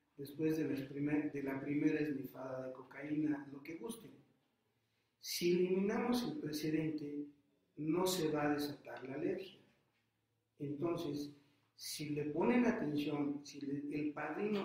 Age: 50-69